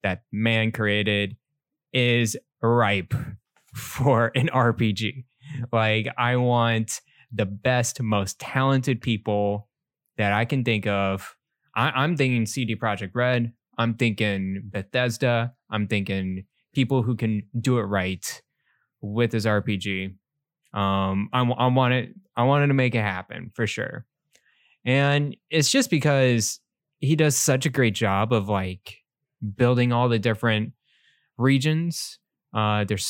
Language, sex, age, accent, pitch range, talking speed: English, male, 10-29, American, 105-130 Hz, 130 wpm